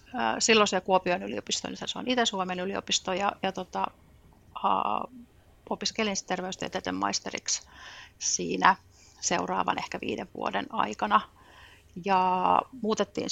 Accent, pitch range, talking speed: native, 180-205 Hz, 105 wpm